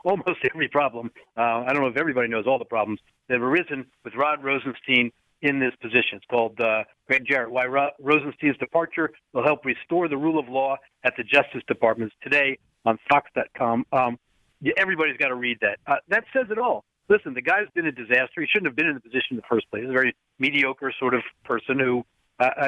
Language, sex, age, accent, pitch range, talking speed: English, male, 50-69, American, 130-175 Hz, 220 wpm